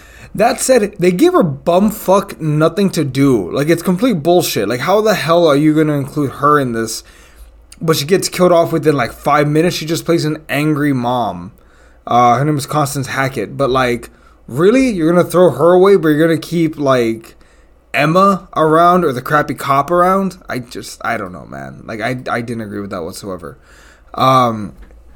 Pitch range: 125-175 Hz